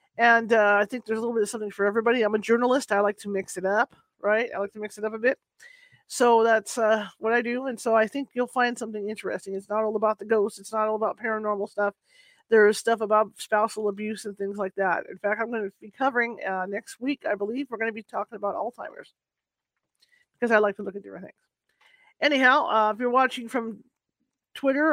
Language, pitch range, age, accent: English, 215-275 Hz, 40-59, American